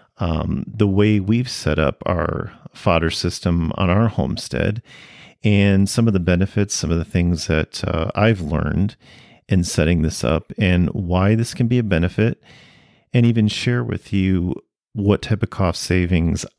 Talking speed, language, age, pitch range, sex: 165 wpm, English, 40-59, 90-110 Hz, male